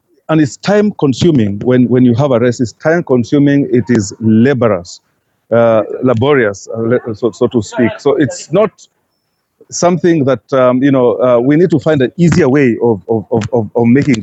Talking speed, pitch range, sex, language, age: 185 wpm, 115-140 Hz, male, English, 40-59